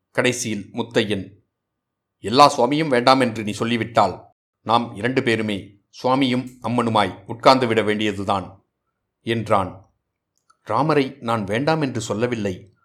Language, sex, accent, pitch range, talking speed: Tamil, male, native, 100-125 Hz, 105 wpm